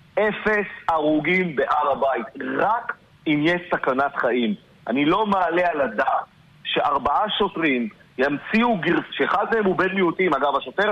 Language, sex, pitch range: Hebrew, male, 140-185 Hz